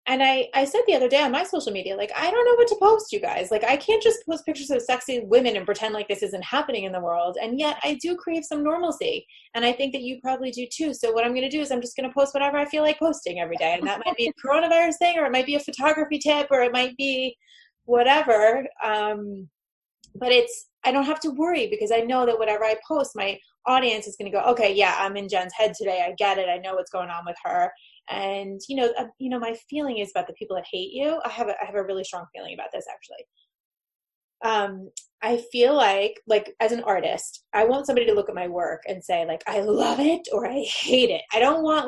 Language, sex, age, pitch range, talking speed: English, female, 20-39, 205-310 Hz, 265 wpm